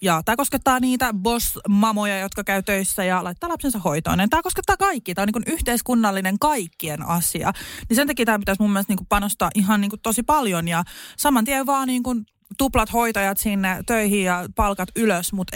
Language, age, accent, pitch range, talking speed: Finnish, 20-39, native, 185-225 Hz, 175 wpm